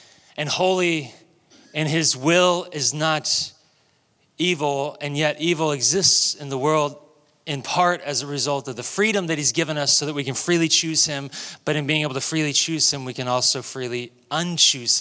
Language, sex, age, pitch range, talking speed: English, male, 30-49, 135-175 Hz, 190 wpm